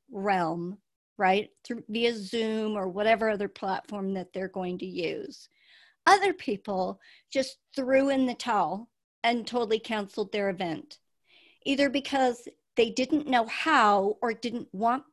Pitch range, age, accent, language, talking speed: 215-285 Hz, 50-69, American, English, 140 wpm